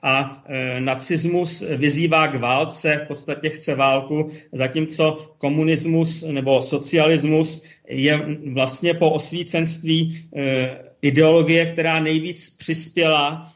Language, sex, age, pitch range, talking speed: Czech, male, 40-59, 135-155 Hz, 100 wpm